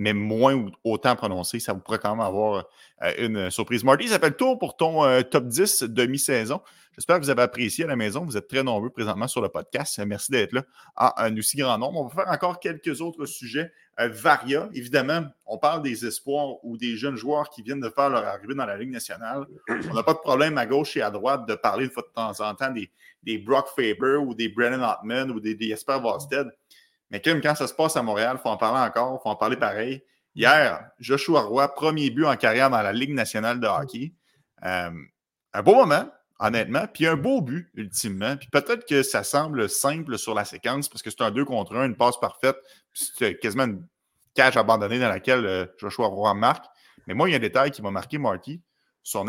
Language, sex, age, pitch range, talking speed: French, male, 30-49, 115-145 Hz, 230 wpm